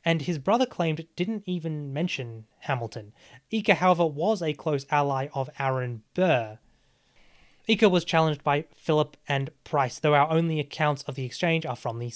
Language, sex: English, male